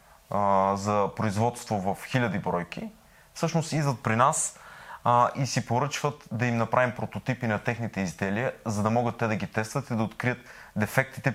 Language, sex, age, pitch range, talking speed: Bulgarian, male, 30-49, 105-125 Hz, 165 wpm